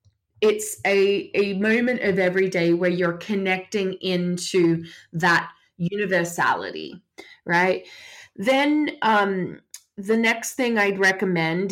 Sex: female